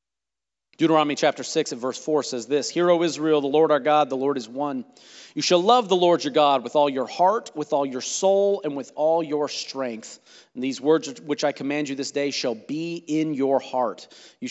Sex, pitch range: male, 130-165 Hz